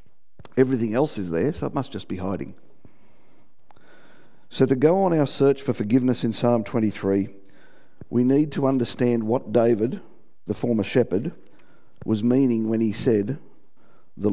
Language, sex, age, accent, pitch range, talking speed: English, male, 50-69, Australian, 110-130 Hz, 150 wpm